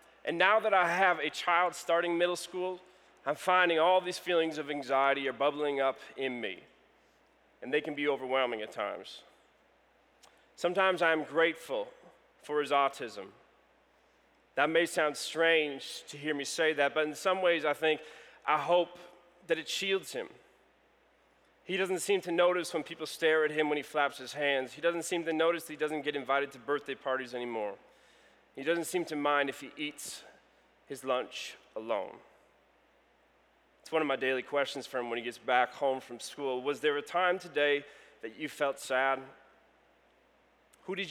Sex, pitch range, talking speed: male, 135-170 Hz, 180 wpm